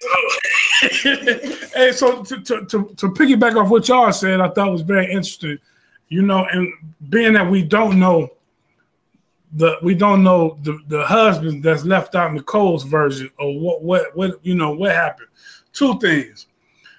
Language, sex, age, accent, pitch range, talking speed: English, male, 20-39, American, 175-220 Hz, 170 wpm